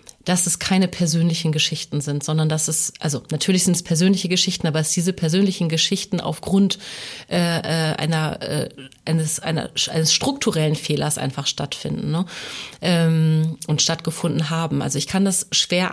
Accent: German